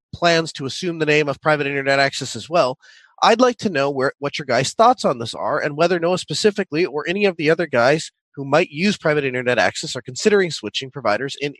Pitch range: 135-180 Hz